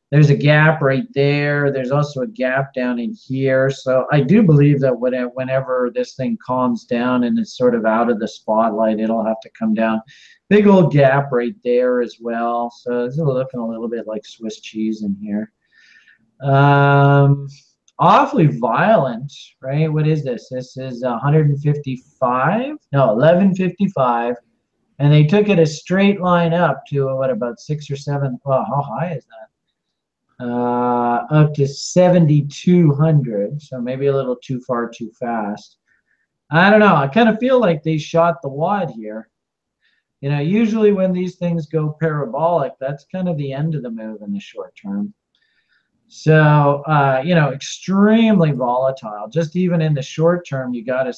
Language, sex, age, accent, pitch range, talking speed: English, male, 40-59, American, 125-165 Hz, 180 wpm